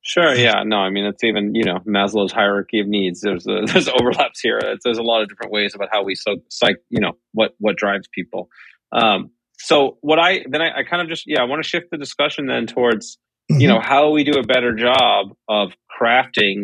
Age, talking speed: 30-49, 235 wpm